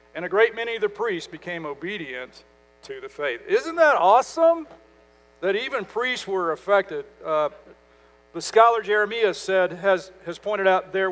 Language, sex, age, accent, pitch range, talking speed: English, male, 50-69, American, 150-215 Hz, 160 wpm